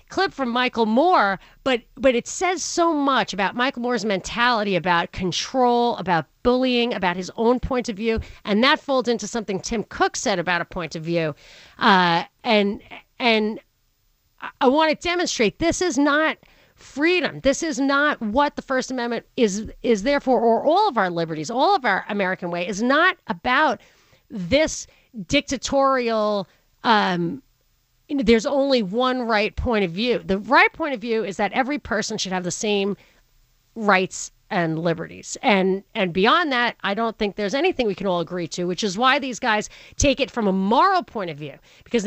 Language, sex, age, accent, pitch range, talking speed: English, female, 40-59, American, 190-260 Hz, 180 wpm